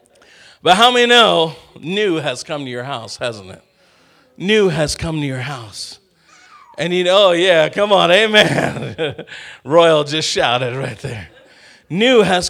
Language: English